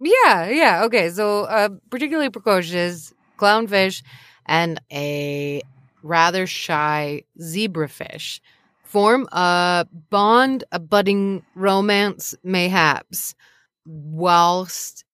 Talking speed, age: 80 wpm, 30-49